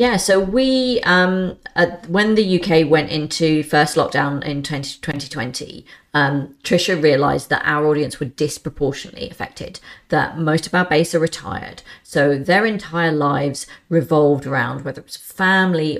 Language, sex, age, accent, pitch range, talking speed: English, female, 40-59, British, 145-170 Hz, 155 wpm